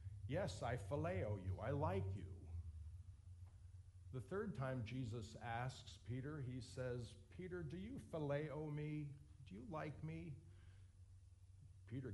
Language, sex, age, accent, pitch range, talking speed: English, male, 50-69, American, 95-125 Hz, 125 wpm